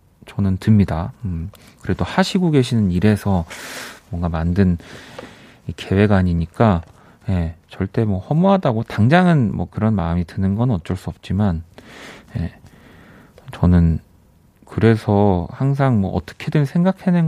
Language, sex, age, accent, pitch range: Korean, male, 40-59, native, 90-120 Hz